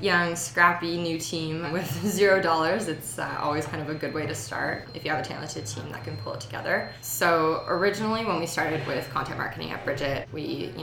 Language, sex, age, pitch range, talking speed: English, female, 20-39, 145-175 Hz, 215 wpm